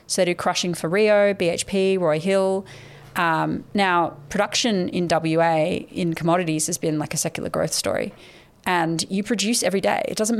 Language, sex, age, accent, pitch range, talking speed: English, female, 30-49, Australian, 170-200 Hz, 175 wpm